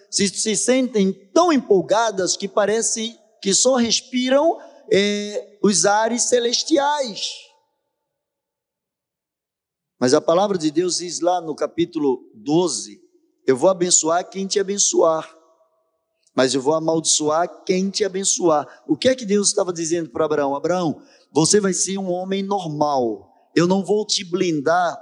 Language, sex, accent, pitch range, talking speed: Portuguese, male, Brazilian, 190-250 Hz, 140 wpm